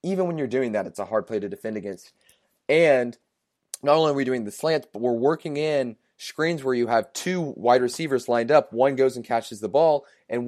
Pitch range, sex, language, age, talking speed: 110-135 Hz, male, English, 30-49, 230 wpm